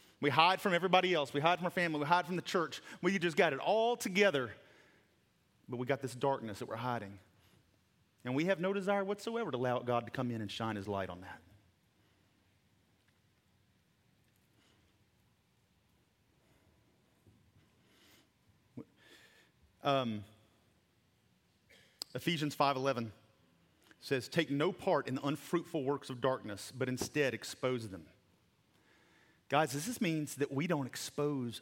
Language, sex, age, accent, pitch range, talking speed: English, male, 40-59, American, 125-190 Hz, 135 wpm